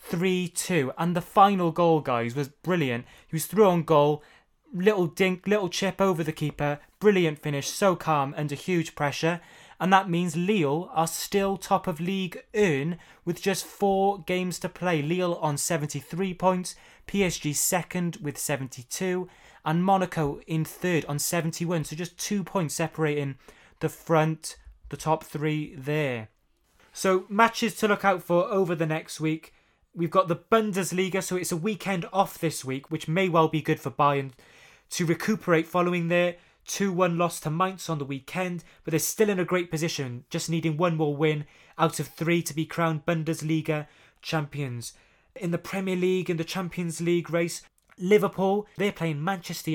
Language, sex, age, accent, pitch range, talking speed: English, male, 20-39, British, 155-185 Hz, 170 wpm